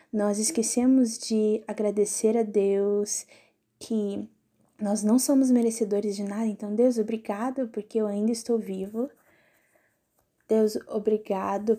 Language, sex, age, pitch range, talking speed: Portuguese, female, 10-29, 205-240 Hz, 115 wpm